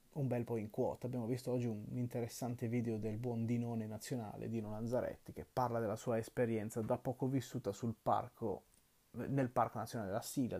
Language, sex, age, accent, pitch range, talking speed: Italian, male, 30-49, native, 110-130 Hz, 180 wpm